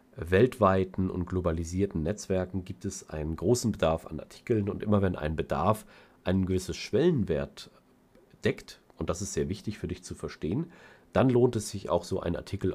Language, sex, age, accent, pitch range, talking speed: German, male, 40-59, German, 85-105 Hz, 175 wpm